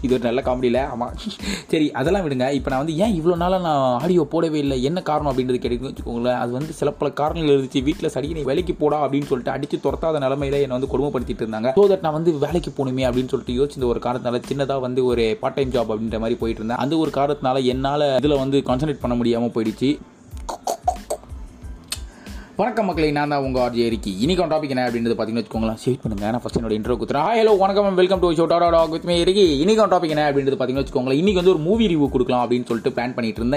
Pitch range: 125-170 Hz